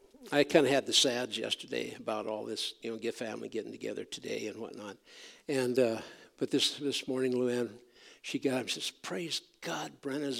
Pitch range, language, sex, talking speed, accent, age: 135-175 Hz, English, male, 190 wpm, American, 60-79